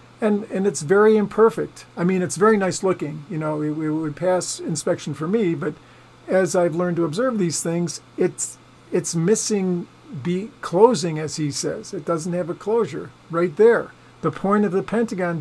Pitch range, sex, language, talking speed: 155-185 Hz, male, English, 185 wpm